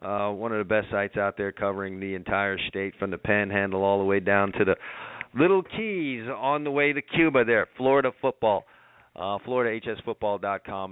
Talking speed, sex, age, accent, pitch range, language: 180 wpm, male, 40-59, American, 100-130 Hz, English